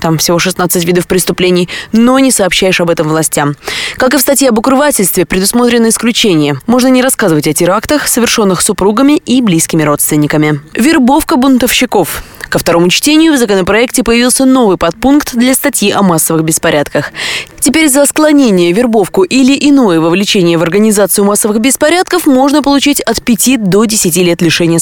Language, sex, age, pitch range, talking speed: Russian, female, 20-39, 165-255 Hz, 150 wpm